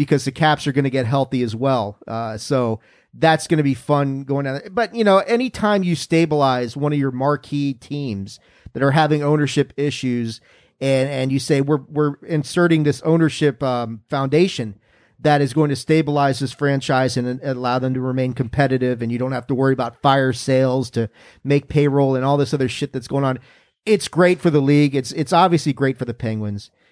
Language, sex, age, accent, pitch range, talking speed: English, male, 40-59, American, 130-155 Hz, 205 wpm